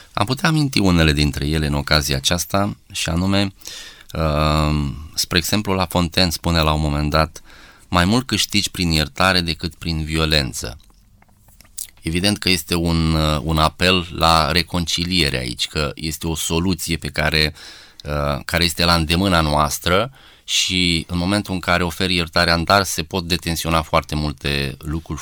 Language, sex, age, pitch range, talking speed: Romanian, male, 20-39, 80-95 Hz, 150 wpm